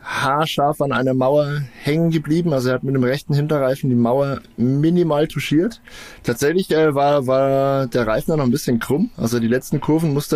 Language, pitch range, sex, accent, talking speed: German, 115-140 Hz, male, German, 185 wpm